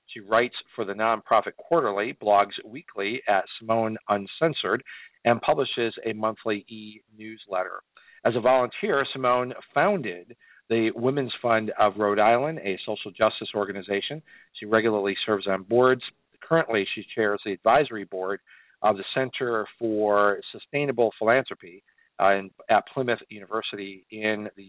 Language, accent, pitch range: English, American, 105-125 Hz